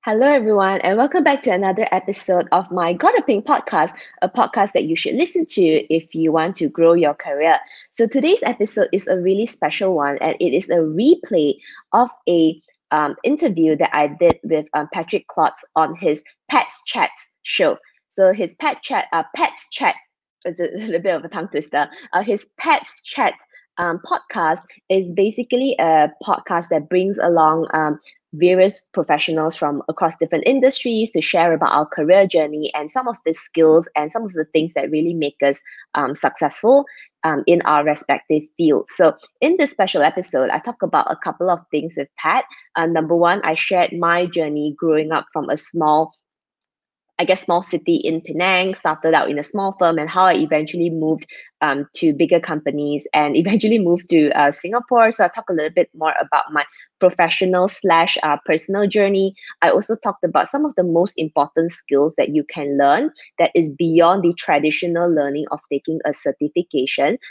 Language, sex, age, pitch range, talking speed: English, female, 20-39, 155-190 Hz, 185 wpm